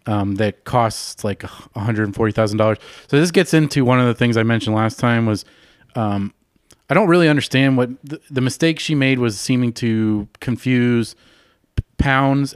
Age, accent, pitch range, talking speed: 30-49, American, 110-130 Hz, 160 wpm